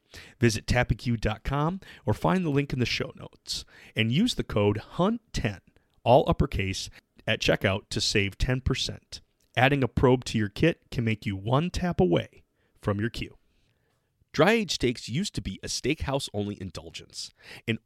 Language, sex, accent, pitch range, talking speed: English, male, American, 95-130 Hz, 155 wpm